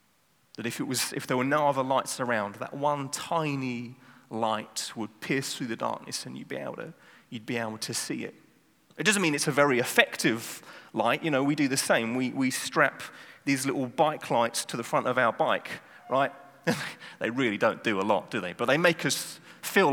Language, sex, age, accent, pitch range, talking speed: English, male, 30-49, British, 130-170 Hz, 215 wpm